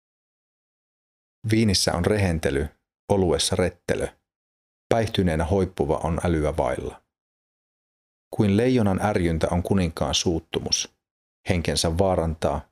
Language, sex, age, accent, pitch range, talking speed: Finnish, male, 40-59, native, 80-100 Hz, 85 wpm